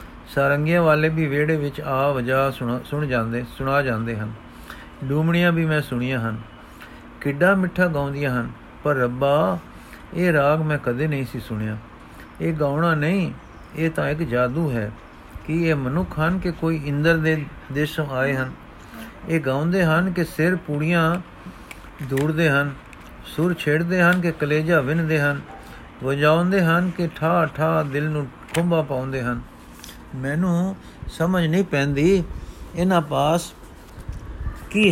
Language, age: Punjabi, 50-69